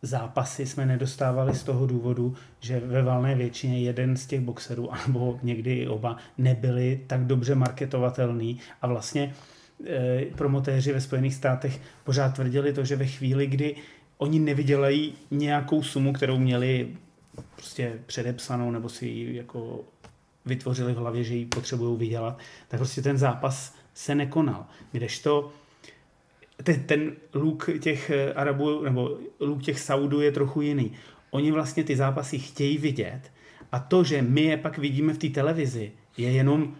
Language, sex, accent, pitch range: Czech, male, native, 125-145 Hz